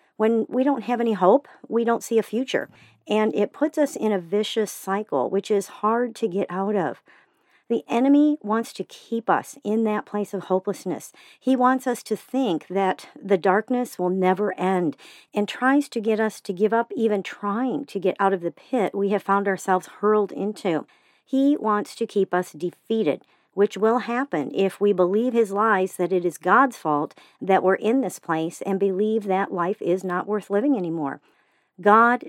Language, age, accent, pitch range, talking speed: English, 50-69, American, 190-230 Hz, 195 wpm